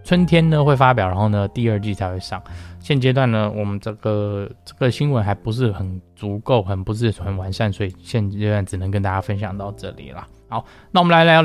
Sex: male